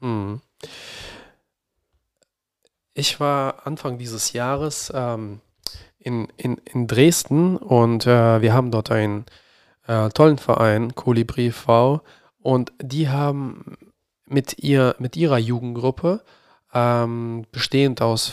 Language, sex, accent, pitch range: German, male, German, 115-140 Hz